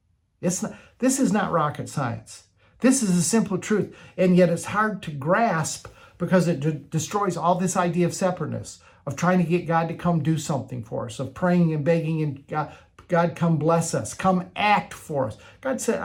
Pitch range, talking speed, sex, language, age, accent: 145-185 Hz, 200 wpm, male, English, 50-69, American